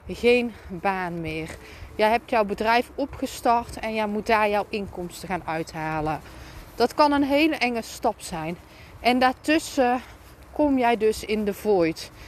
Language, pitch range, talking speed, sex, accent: Dutch, 210-250 Hz, 150 wpm, female, Dutch